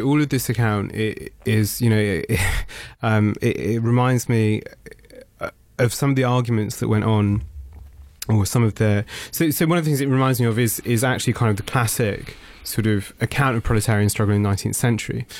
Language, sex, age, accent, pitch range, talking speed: English, male, 20-39, British, 105-125 Hz, 205 wpm